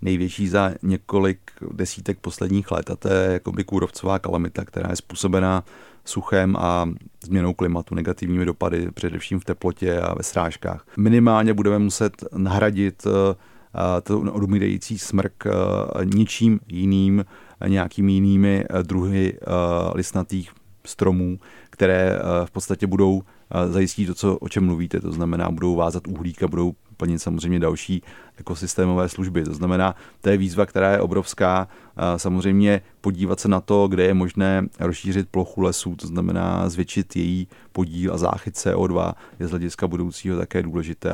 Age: 30-49